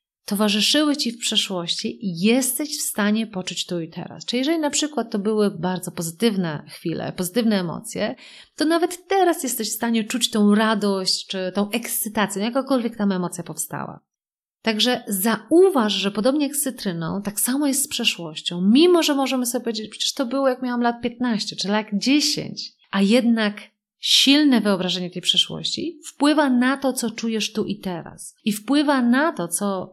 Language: Polish